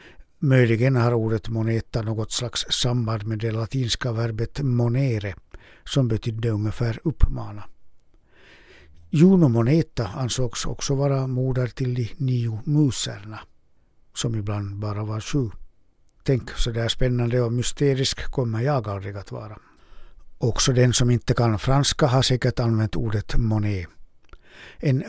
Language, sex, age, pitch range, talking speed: Swedish, male, 60-79, 110-135 Hz, 130 wpm